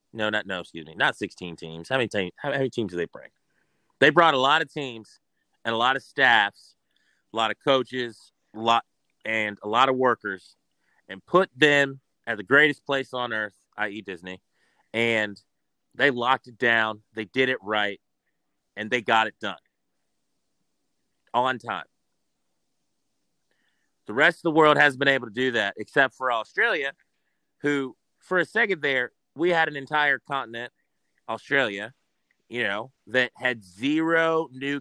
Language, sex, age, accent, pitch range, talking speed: English, male, 30-49, American, 110-140 Hz, 165 wpm